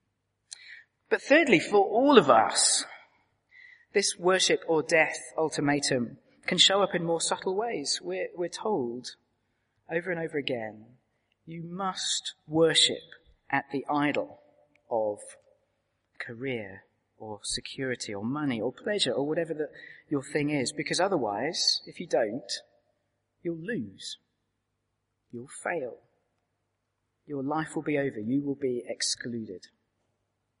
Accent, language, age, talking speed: British, English, 40-59, 125 wpm